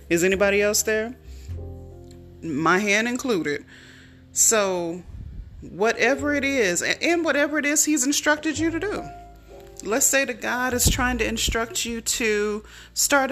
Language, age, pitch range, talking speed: English, 30-49, 155-220 Hz, 140 wpm